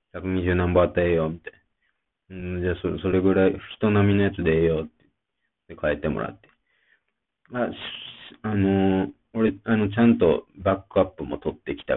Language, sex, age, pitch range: Japanese, male, 40-59, 85-110 Hz